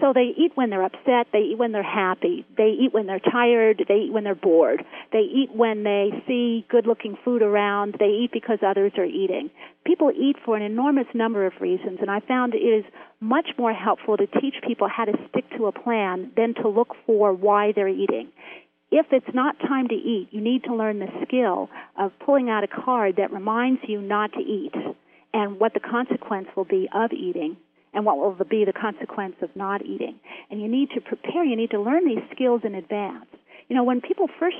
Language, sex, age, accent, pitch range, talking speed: English, female, 40-59, American, 205-255 Hz, 215 wpm